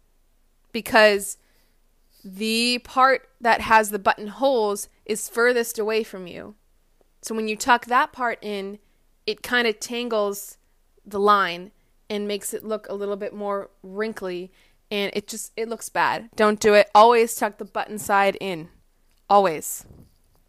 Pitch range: 200-240 Hz